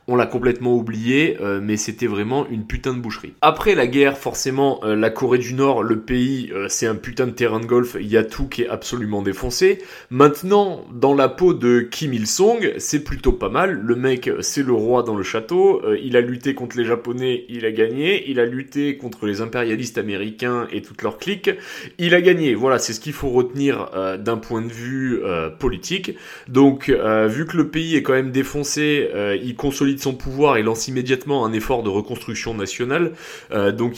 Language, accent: French, French